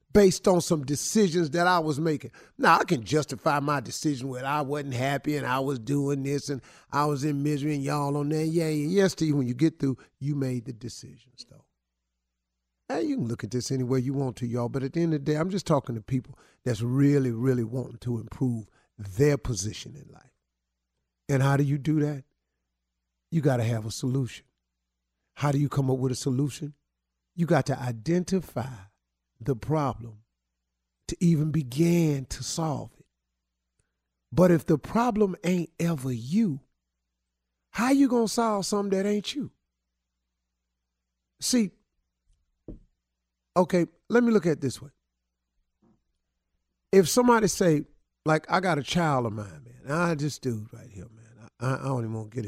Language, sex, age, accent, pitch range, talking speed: English, male, 50-69, American, 95-150 Hz, 180 wpm